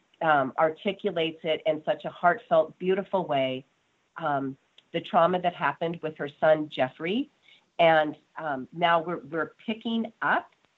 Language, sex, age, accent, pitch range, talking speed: English, female, 40-59, American, 150-190 Hz, 140 wpm